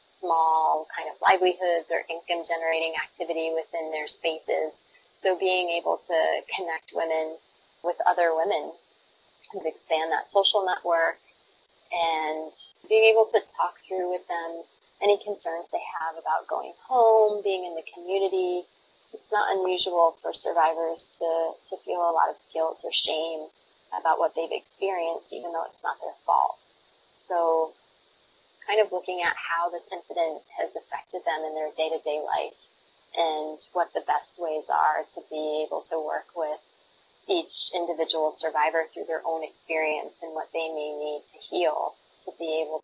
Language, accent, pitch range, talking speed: English, American, 160-185 Hz, 155 wpm